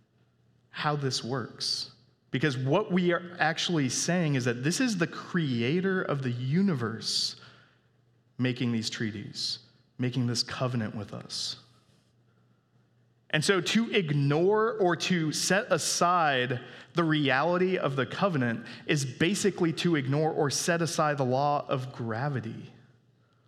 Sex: male